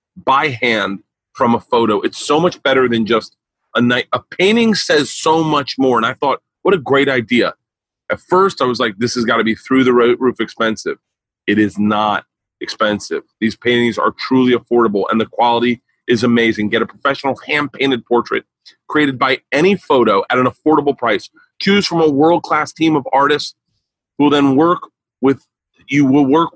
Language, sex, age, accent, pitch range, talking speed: English, male, 30-49, American, 120-160 Hz, 190 wpm